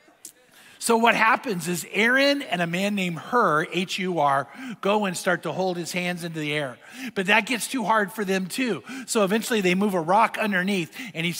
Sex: male